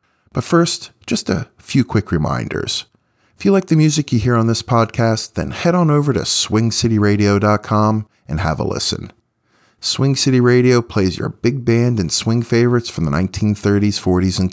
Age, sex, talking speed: 40-59, male, 175 wpm